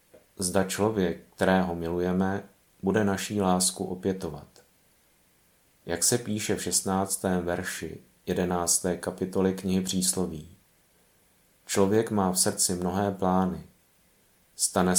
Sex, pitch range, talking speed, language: male, 90-100 Hz, 100 wpm, Czech